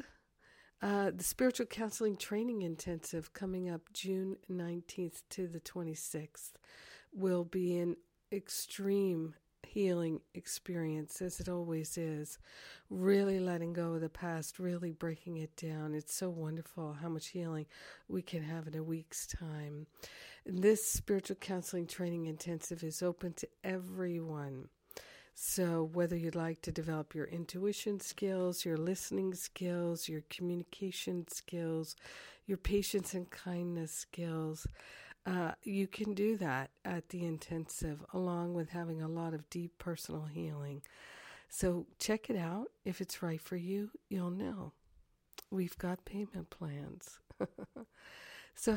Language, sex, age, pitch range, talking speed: English, female, 50-69, 160-185 Hz, 135 wpm